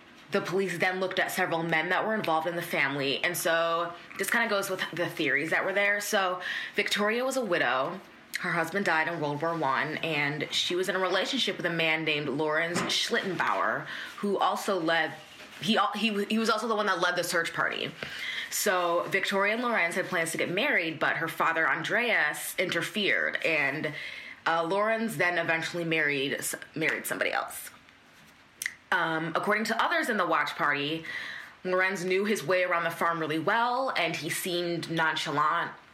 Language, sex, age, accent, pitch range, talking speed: English, female, 20-39, American, 160-195 Hz, 180 wpm